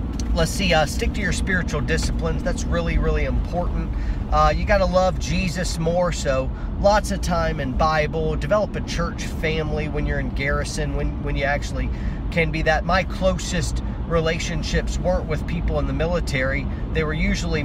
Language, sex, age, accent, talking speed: English, male, 40-59, American, 175 wpm